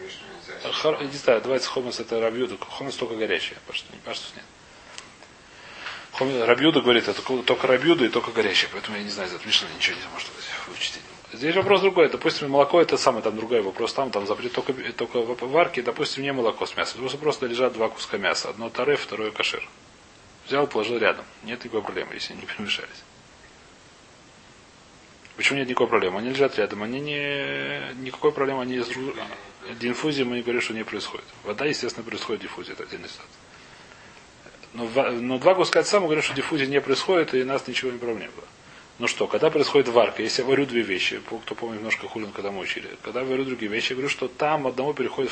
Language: Russian